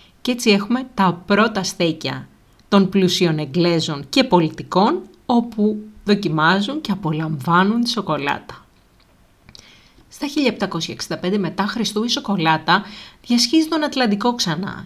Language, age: Greek, 30-49